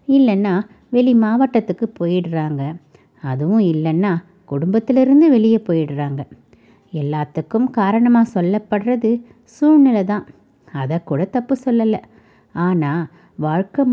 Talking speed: 90 wpm